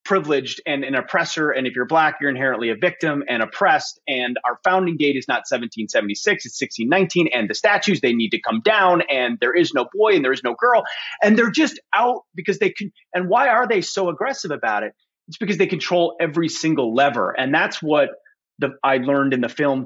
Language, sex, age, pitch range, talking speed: English, male, 30-49, 140-195 Hz, 220 wpm